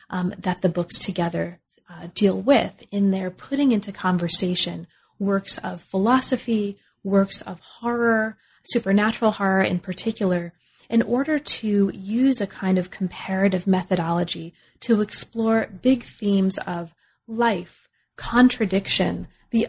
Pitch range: 180-220 Hz